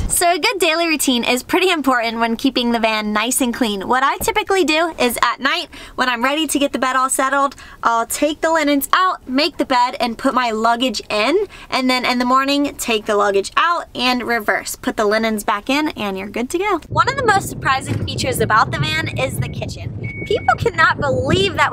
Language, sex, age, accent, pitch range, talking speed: Dutch, female, 20-39, American, 235-325 Hz, 225 wpm